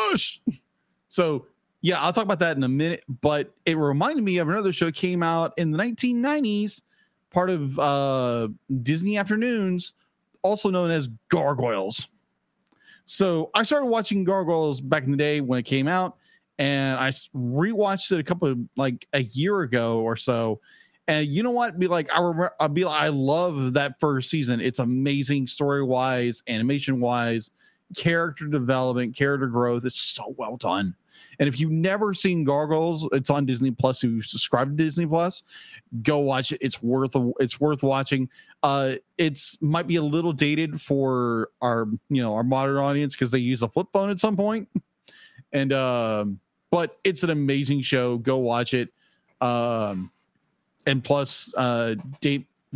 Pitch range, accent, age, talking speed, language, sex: 130-170 Hz, American, 30-49, 165 wpm, English, male